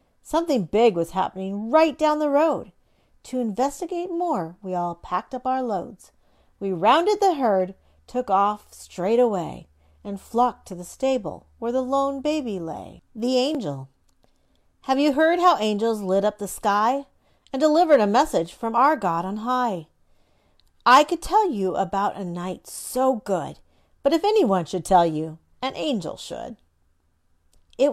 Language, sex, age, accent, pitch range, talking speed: English, female, 40-59, American, 185-280 Hz, 160 wpm